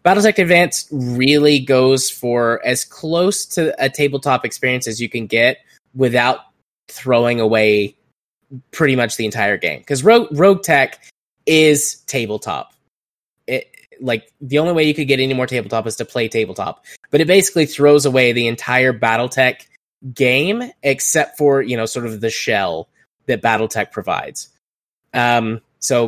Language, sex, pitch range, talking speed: English, male, 120-150 Hz, 150 wpm